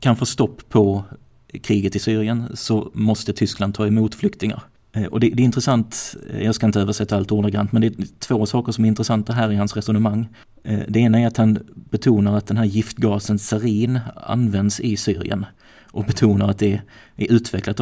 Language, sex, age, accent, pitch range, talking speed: Swedish, male, 30-49, native, 105-110 Hz, 190 wpm